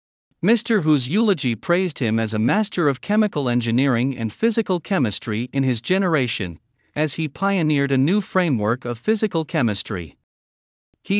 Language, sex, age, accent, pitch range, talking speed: English, male, 50-69, American, 120-175 Hz, 145 wpm